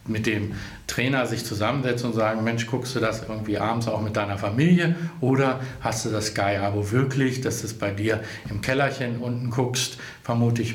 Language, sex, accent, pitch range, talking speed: German, male, German, 110-135 Hz, 190 wpm